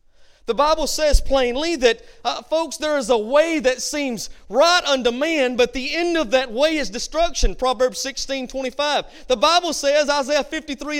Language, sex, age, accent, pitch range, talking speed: English, male, 40-59, American, 205-310 Hz, 175 wpm